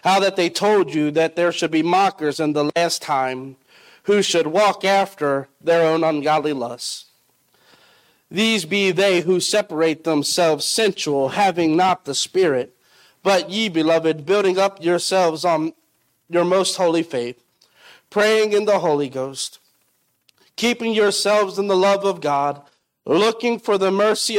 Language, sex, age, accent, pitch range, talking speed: English, male, 40-59, American, 160-205 Hz, 150 wpm